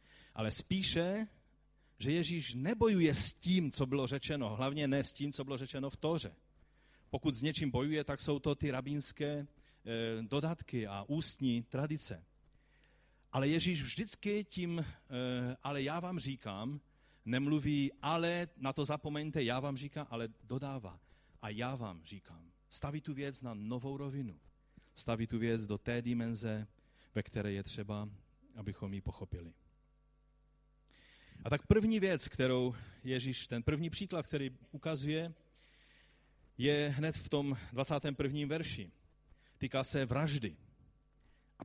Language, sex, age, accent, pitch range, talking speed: Czech, male, 40-59, native, 115-150 Hz, 135 wpm